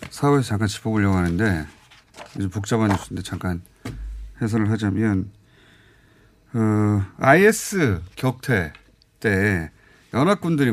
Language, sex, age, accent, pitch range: Korean, male, 40-59, native, 100-140 Hz